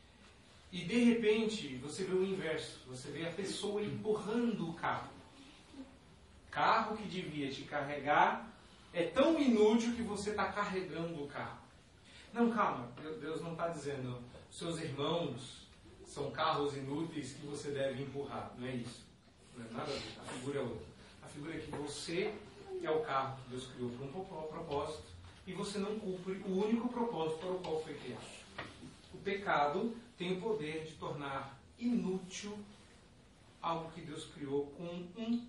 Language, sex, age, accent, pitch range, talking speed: Portuguese, male, 40-59, Brazilian, 130-190 Hz, 155 wpm